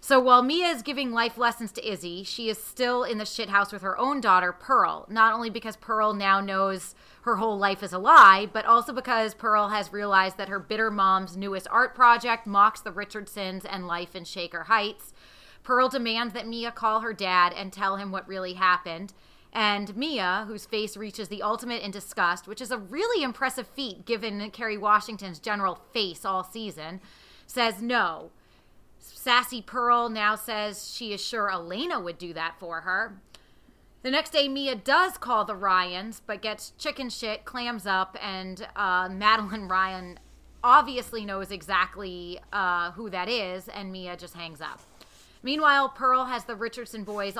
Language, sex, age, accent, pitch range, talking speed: English, female, 30-49, American, 190-235 Hz, 175 wpm